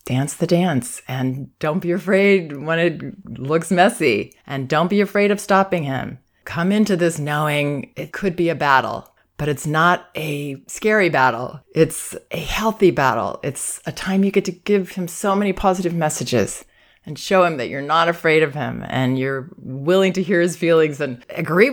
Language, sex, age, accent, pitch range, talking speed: English, female, 30-49, American, 150-235 Hz, 185 wpm